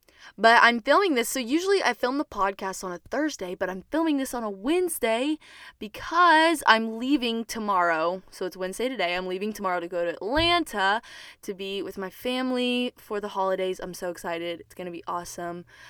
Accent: American